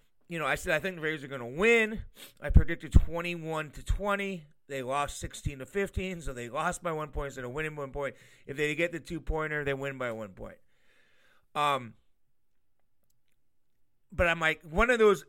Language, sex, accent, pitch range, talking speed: English, male, American, 130-180 Hz, 205 wpm